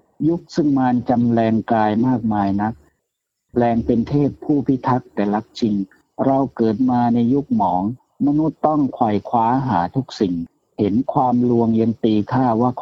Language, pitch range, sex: Thai, 110-140 Hz, male